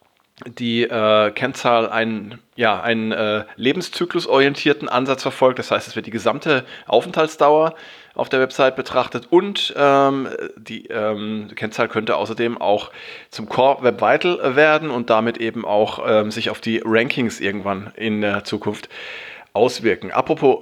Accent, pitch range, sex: German, 115-160 Hz, male